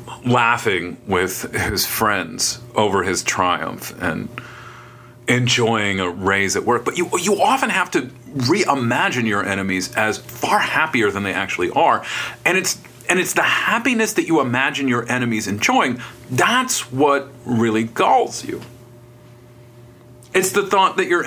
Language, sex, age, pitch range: English, male, 40-59, 120-130 Hz